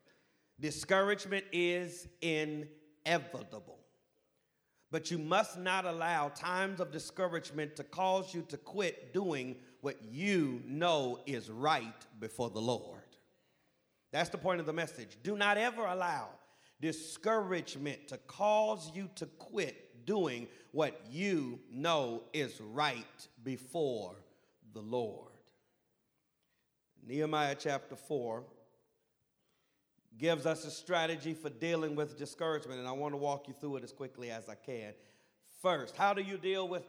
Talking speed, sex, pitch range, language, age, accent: 130 wpm, male, 125-170 Hz, English, 40-59, American